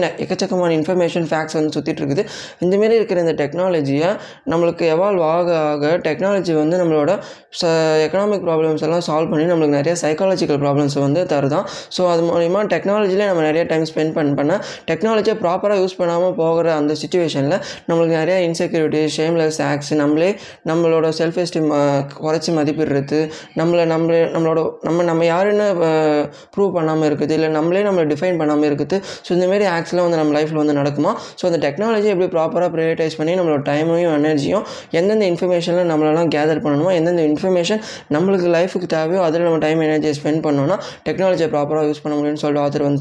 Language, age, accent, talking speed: Tamil, 20-39, native, 65 wpm